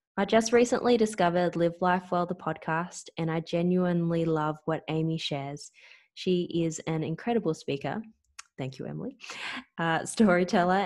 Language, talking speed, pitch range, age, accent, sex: English, 145 wpm, 160-180 Hz, 20-39, Australian, female